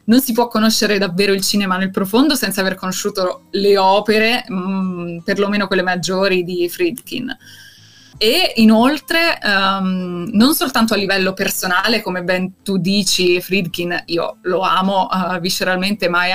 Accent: native